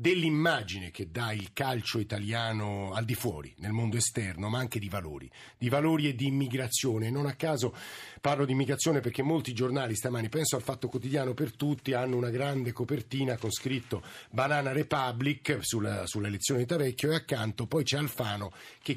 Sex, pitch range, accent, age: male, 115-145 Hz, native, 50-69